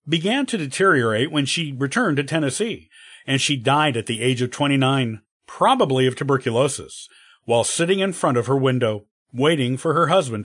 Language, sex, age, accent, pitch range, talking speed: English, male, 50-69, American, 125-165 Hz, 170 wpm